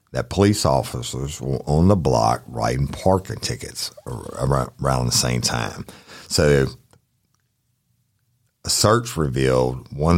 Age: 50-69